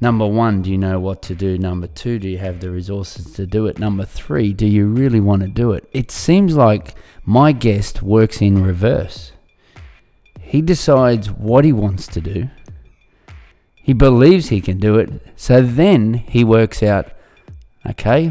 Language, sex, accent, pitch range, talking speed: English, male, Australian, 95-115 Hz, 175 wpm